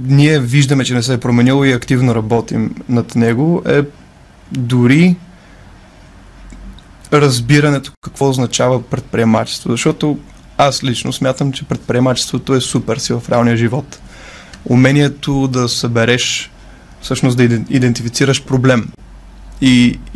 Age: 20-39